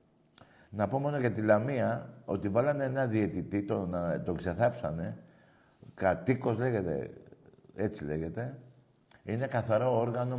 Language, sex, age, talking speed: Greek, male, 60-79, 115 wpm